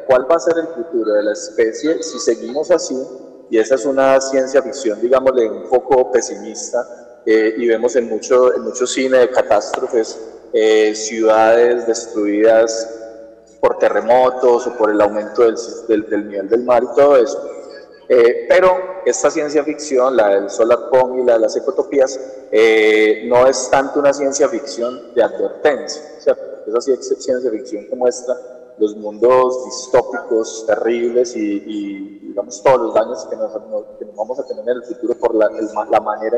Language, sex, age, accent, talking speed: Spanish, male, 20-39, Colombian, 175 wpm